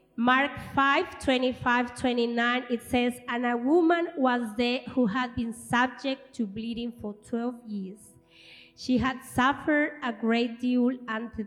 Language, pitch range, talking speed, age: English, 220-270 Hz, 140 wpm, 20-39